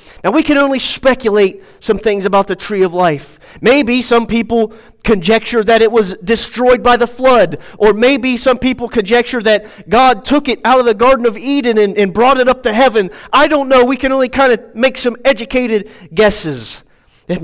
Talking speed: 200 wpm